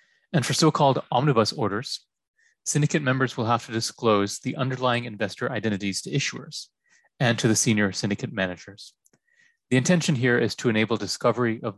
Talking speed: 160 wpm